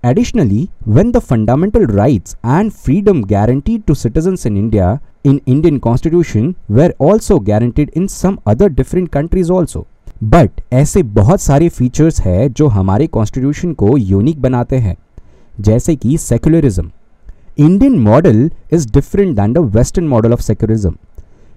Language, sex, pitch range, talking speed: Hindi, male, 110-170 Hz, 140 wpm